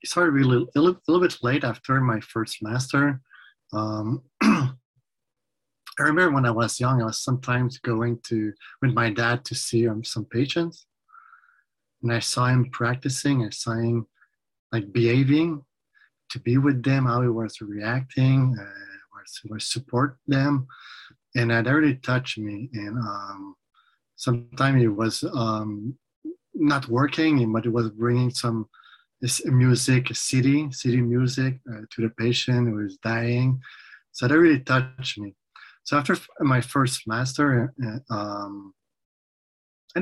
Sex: male